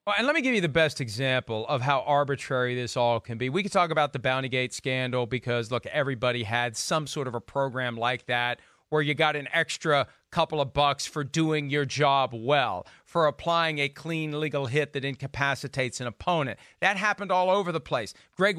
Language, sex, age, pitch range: English, male, 40-59, 145-220 Hz